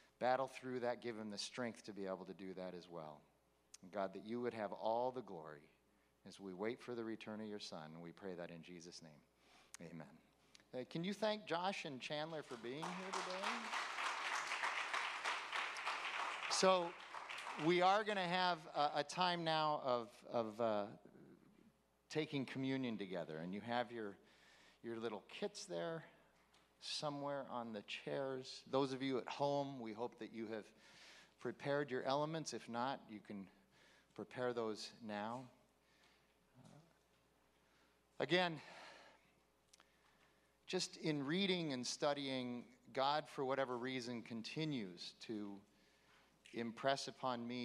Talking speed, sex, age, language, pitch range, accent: 145 wpm, male, 50-69, English, 105-140 Hz, American